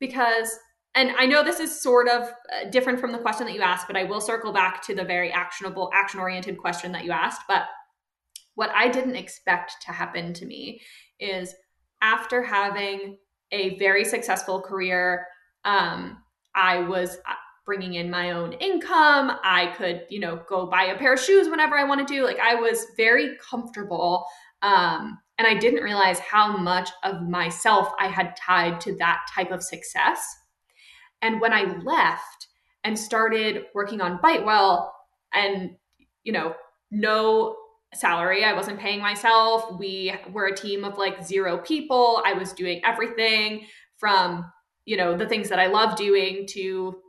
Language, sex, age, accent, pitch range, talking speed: English, female, 20-39, American, 185-230 Hz, 165 wpm